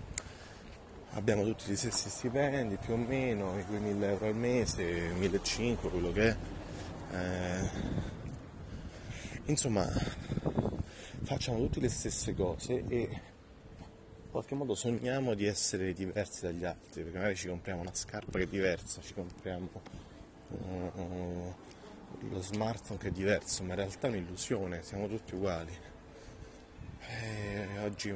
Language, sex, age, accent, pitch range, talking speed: Italian, male, 30-49, native, 90-115 Hz, 125 wpm